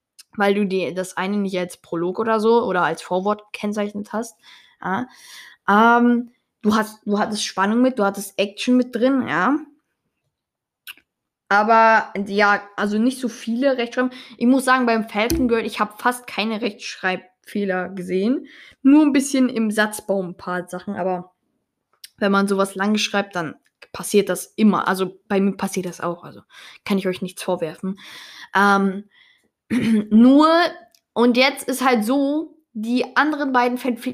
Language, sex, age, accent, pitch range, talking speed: German, female, 10-29, German, 200-250 Hz, 155 wpm